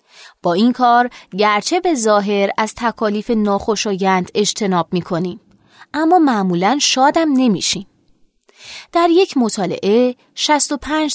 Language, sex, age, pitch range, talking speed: Persian, female, 20-39, 195-265 Hz, 100 wpm